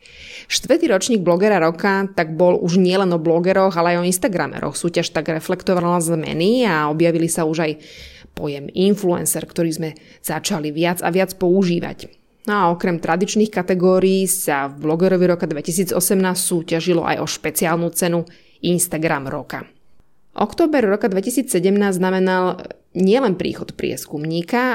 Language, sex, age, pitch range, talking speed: Slovak, female, 20-39, 165-200 Hz, 135 wpm